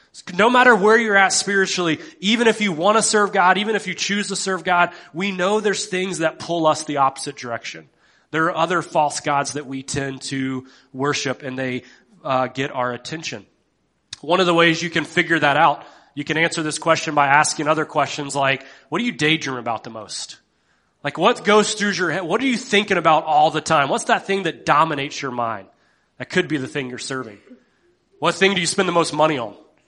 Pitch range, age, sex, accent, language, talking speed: 145-190 Hz, 30-49, male, American, English, 220 wpm